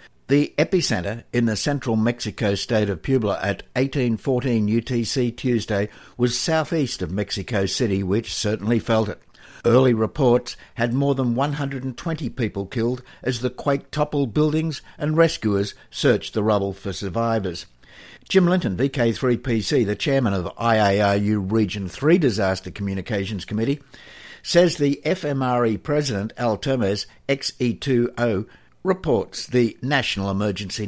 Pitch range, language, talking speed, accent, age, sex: 105-130 Hz, English, 125 wpm, Australian, 60-79, male